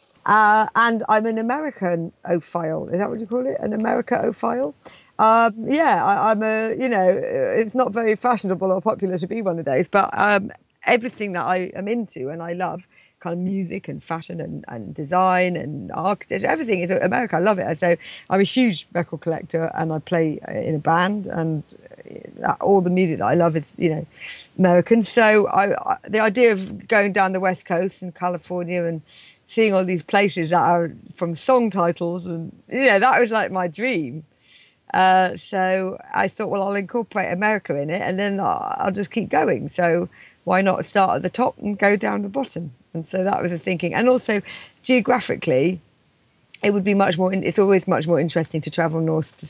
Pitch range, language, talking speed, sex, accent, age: 170-210 Hz, English, 200 wpm, female, British, 50-69